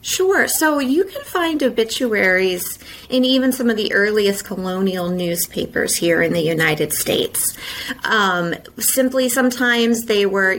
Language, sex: English, female